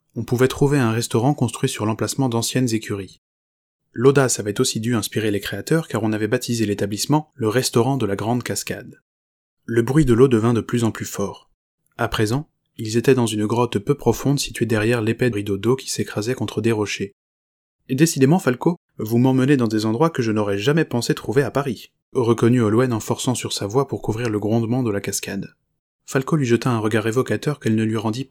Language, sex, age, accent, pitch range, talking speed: French, male, 20-39, French, 105-130 Hz, 210 wpm